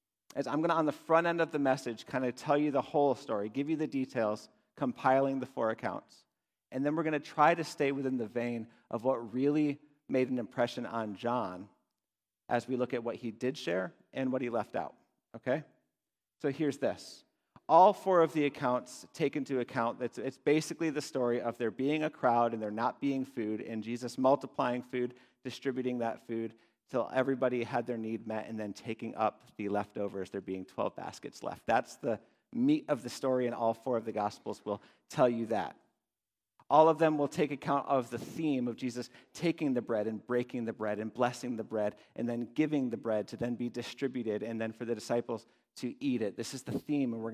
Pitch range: 115-140 Hz